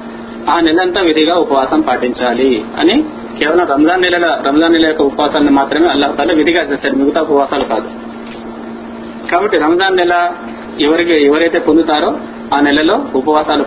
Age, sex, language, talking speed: 40-59, male, Telugu, 125 wpm